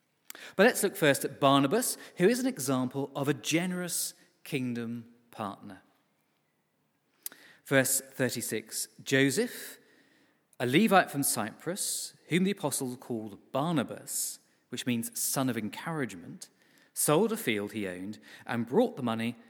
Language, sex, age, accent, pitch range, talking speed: English, male, 40-59, British, 120-160 Hz, 125 wpm